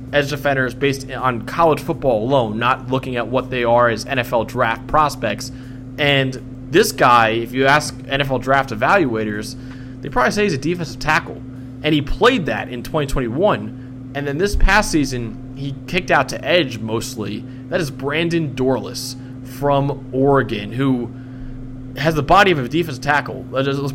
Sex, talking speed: male, 165 wpm